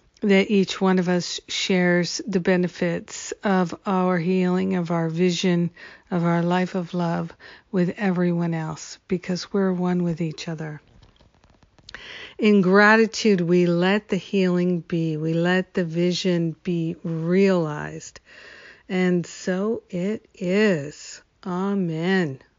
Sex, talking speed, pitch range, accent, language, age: female, 120 wpm, 170-215 Hz, American, English, 50-69